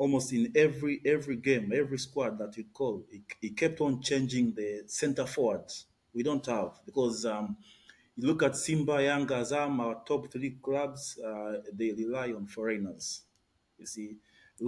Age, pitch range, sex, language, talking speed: 30-49, 115-150 Hz, male, English, 165 wpm